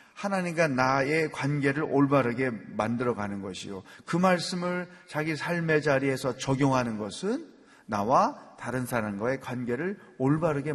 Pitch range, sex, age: 125-205 Hz, male, 30-49